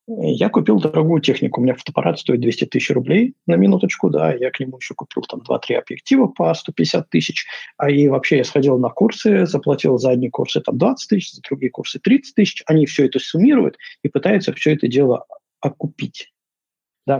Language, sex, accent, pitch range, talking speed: Russian, male, native, 125-170 Hz, 190 wpm